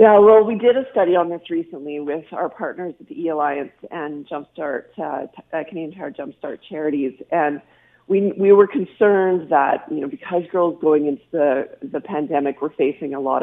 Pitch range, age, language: 150-195 Hz, 40-59, English